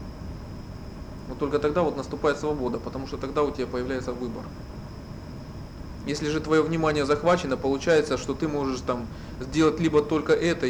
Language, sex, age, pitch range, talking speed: Russian, male, 20-39, 125-150 Hz, 145 wpm